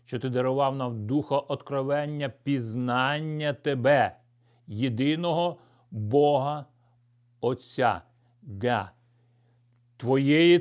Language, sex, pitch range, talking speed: Ukrainian, male, 120-145 Hz, 70 wpm